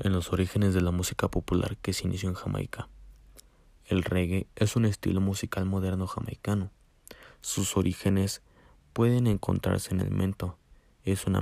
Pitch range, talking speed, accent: 90-100 Hz, 150 wpm, Mexican